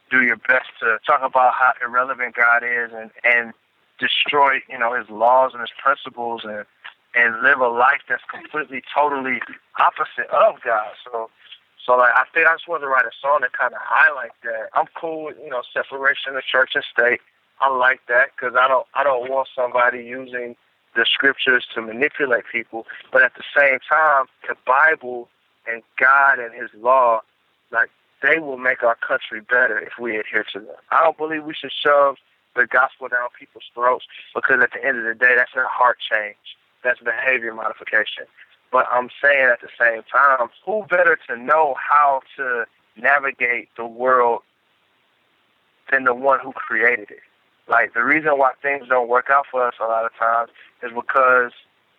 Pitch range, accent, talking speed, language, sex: 120-140 Hz, American, 185 wpm, English, male